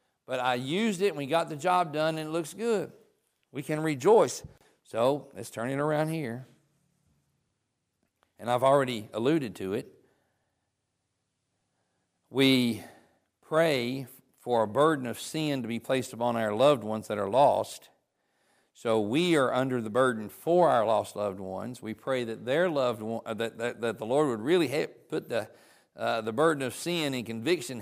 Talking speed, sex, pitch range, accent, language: 170 wpm, male, 115-145 Hz, American, English